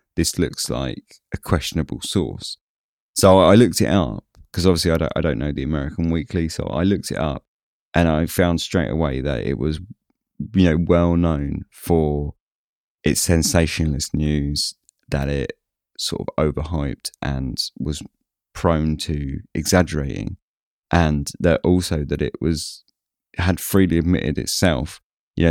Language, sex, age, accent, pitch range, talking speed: English, male, 30-49, British, 75-95 Hz, 150 wpm